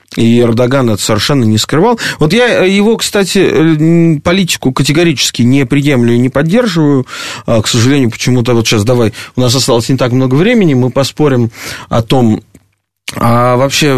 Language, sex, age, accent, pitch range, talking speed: Russian, male, 30-49, native, 110-150 Hz, 155 wpm